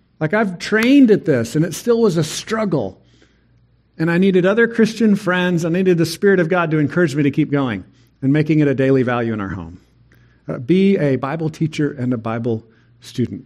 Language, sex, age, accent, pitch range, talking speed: English, male, 50-69, American, 130-175 Hz, 215 wpm